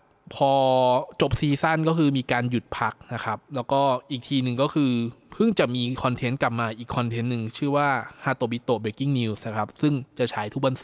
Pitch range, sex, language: 115-145 Hz, male, Thai